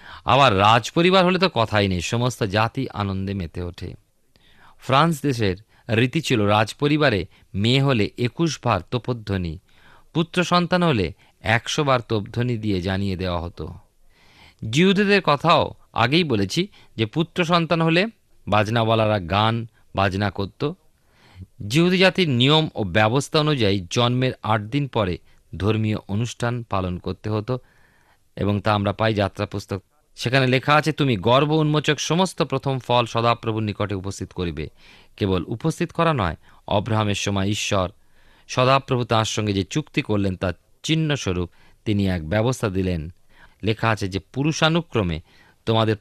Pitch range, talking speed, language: 95-135 Hz, 130 wpm, Bengali